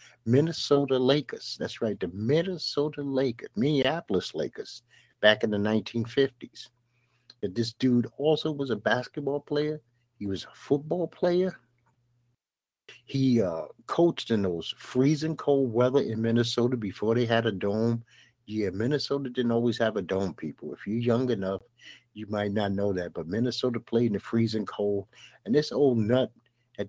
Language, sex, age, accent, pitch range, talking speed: English, male, 50-69, American, 110-135 Hz, 155 wpm